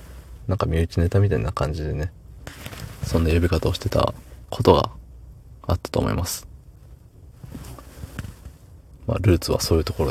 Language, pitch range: Japanese, 75-100 Hz